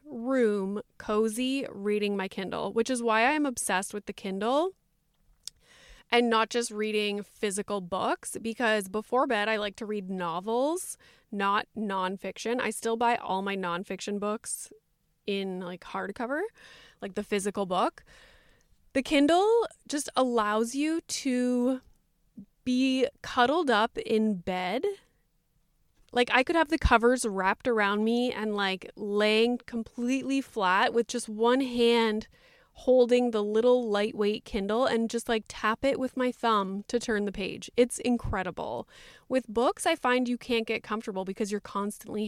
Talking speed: 145 wpm